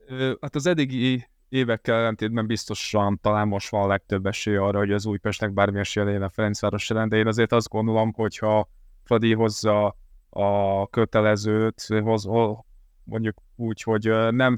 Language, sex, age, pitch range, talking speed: Hungarian, male, 20-39, 105-115 Hz, 150 wpm